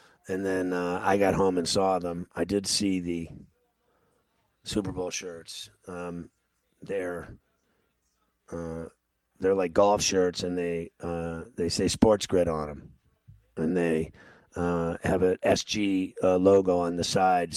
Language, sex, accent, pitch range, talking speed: English, male, American, 90-100 Hz, 145 wpm